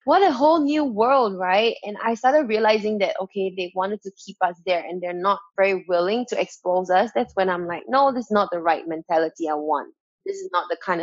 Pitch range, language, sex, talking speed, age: 175-215 Hz, English, female, 240 wpm, 20-39